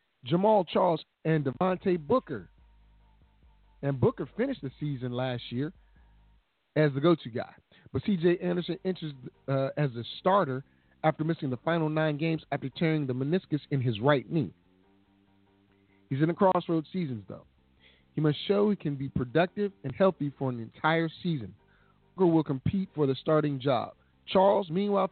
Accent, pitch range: American, 125-175 Hz